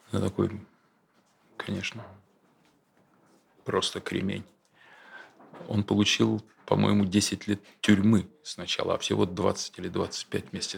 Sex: male